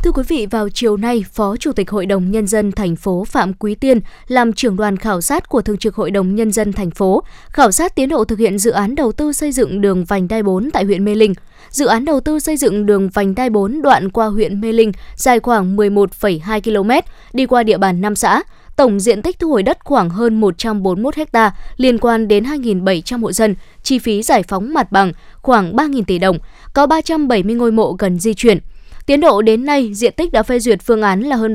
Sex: female